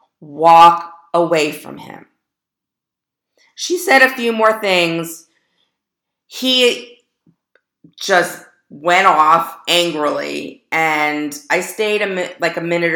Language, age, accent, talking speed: English, 40-59, American, 105 wpm